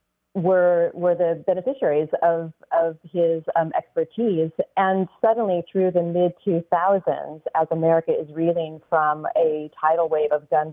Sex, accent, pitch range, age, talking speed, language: female, American, 155-185 Hz, 30-49, 140 wpm, English